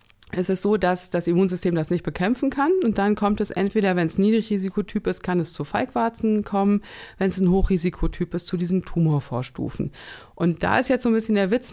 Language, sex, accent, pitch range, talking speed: German, female, German, 165-210 Hz, 210 wpm